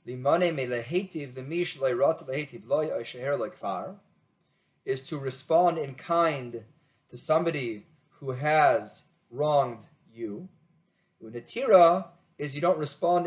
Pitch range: 140-175 Hz